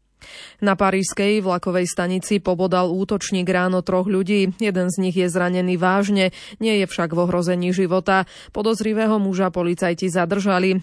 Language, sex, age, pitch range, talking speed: Slovak, female, 20-39, 180-205 Hz, 140 wpm